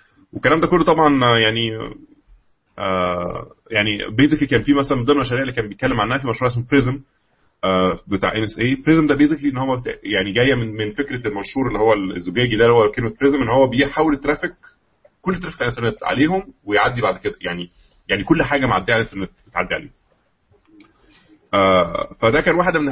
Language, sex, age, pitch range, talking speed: Arabic, male, 20-39, 100-130 Hz, 190 wpm